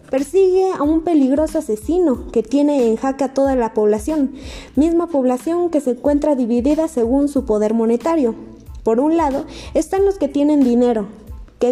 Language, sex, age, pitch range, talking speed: Spanish, female, 20-39, 230-295 Hz, 165 wpm